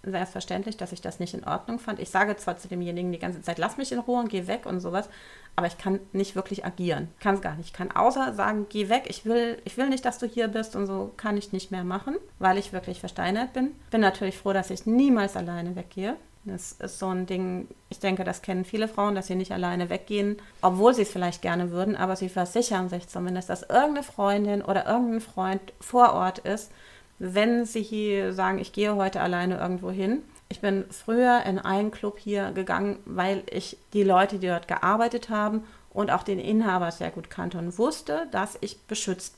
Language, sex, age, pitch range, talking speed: German, female, 30-49, 185-220 Hz, 220 wpm